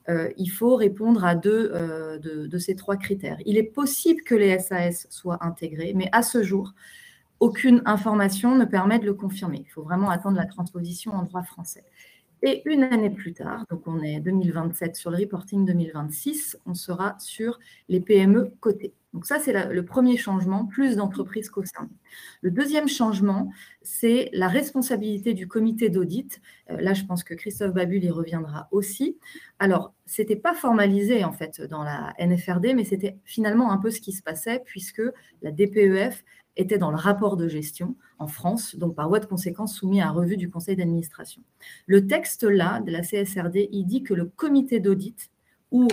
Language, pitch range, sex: French, 175-230 Hz, female